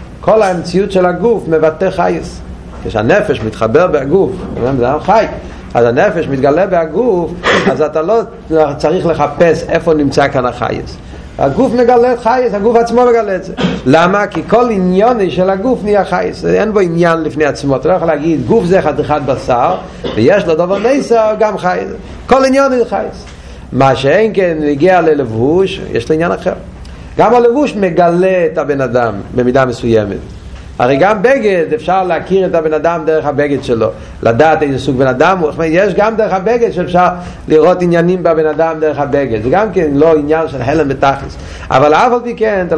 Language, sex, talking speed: Hebrew, male, 170 wpm